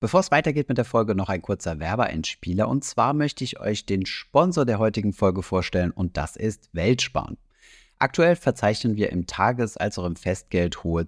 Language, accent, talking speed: German, German, 190 wpm